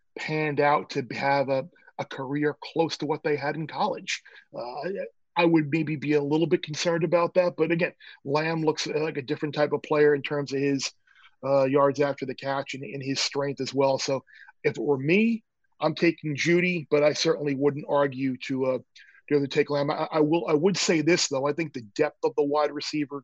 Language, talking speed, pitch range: English, 220 wpm, 140-155 Hz